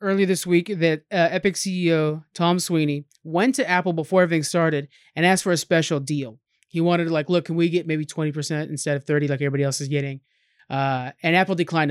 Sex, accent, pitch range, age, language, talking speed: male, American, 150-185 Hz, 30-49, English, 215 wpm